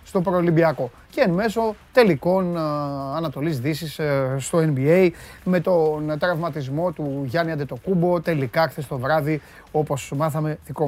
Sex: male